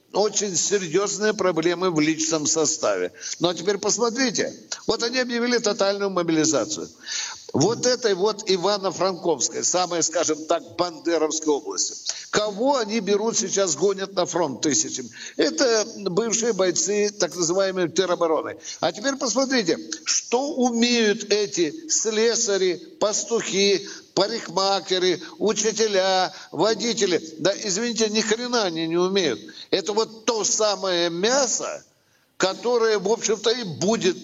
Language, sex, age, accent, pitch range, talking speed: Russian, male, 60-79, native, 180-225 Hz, 115 wpm